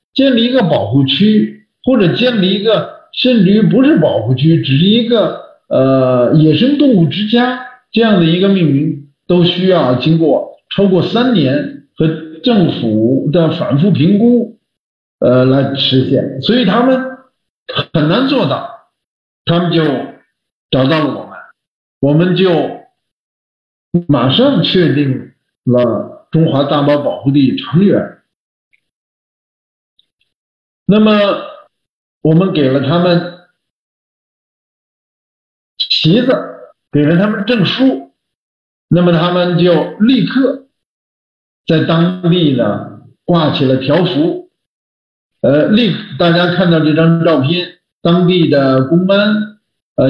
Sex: male